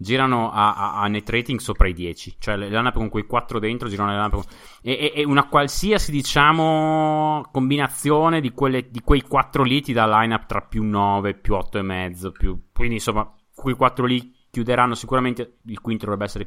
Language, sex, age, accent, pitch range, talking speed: Italian, male, 30-49, native, 105-125 Hz, 195 wpm